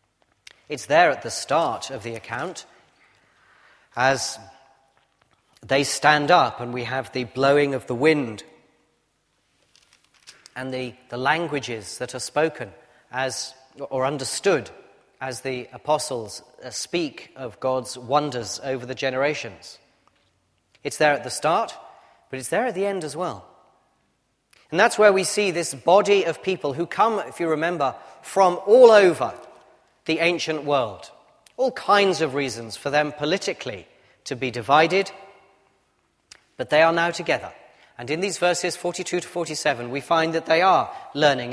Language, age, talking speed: English, 30-49, 145 wpm